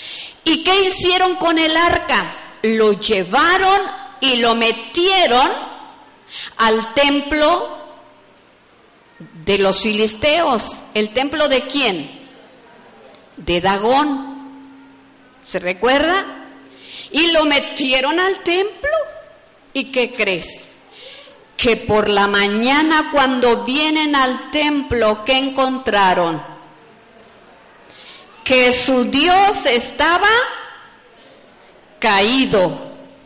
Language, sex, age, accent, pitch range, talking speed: Spanish, female, 50-69, Mexican, 220-315 Hz, 85 wpm